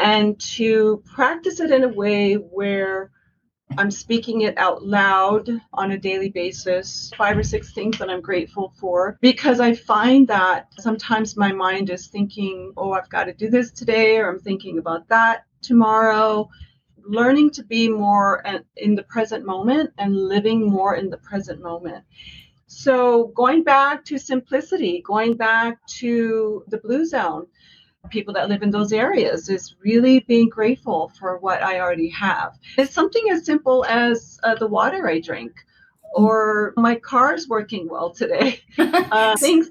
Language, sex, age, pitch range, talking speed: English, female, 40-59, 195-255 Hz, 160 wpm